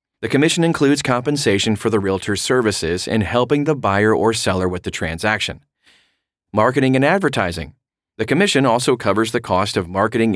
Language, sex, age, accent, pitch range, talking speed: English, male, 30-49, American, 100-140 Hz, 160 wpm